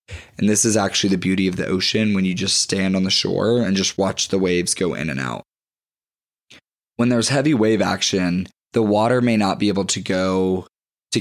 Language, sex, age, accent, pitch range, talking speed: English, male, 20-39, American, 95-110 Hz, 210 wpm